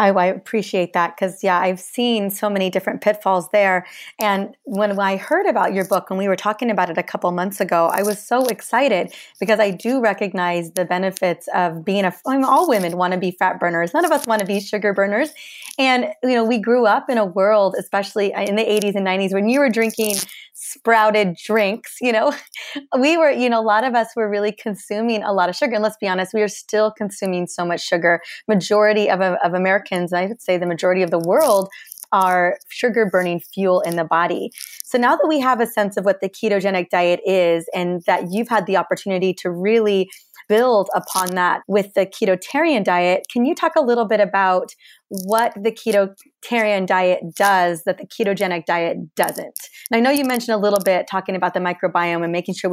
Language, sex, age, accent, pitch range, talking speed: English, female, 30-49, American, 185-225 Hz, 210 wpm